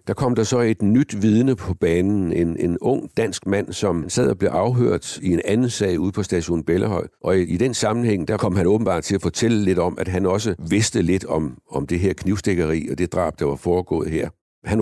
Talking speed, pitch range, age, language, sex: 240 wpm, 90-110 Hz, 60-79, Danish, male